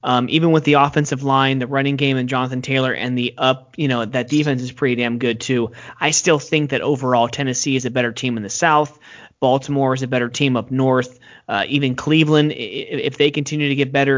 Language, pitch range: English, 125-145 Hz